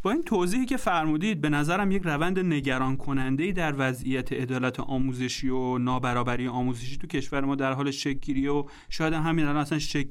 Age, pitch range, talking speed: 30-49, 135-175 Hz, 180 wpm